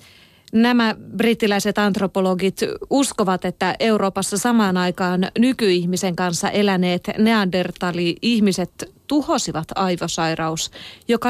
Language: Finnish